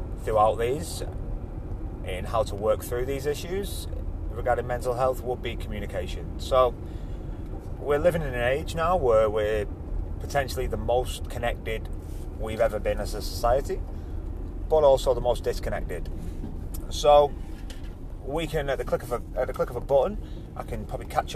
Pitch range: 85-120 Hz